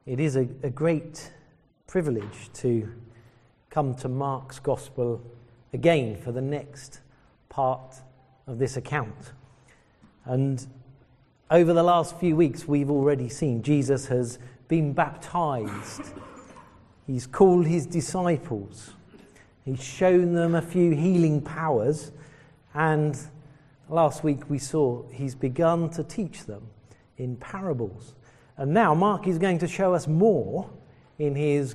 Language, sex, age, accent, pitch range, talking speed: English, male, 40-59, British, 120-155 Hz, 125 wpm